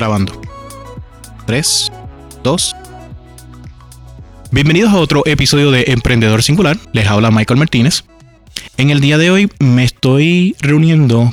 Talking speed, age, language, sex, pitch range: 115 wpm, 20-39, Spanish, male, 110-135 Hz